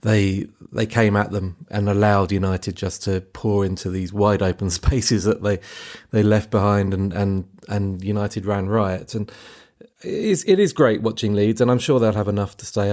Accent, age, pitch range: British, 30-49, 100-120 Hz